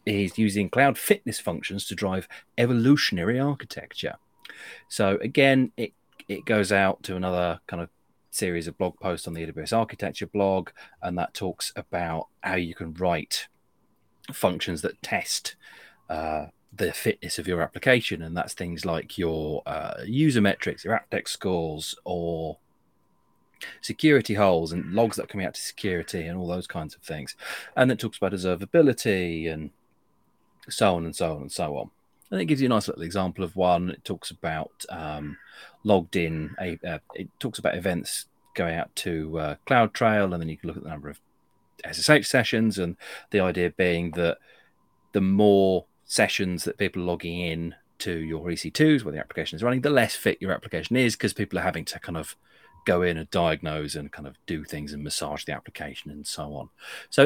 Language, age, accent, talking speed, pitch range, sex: English, 30-49, British, 185 wpm, 85-105 Hz, male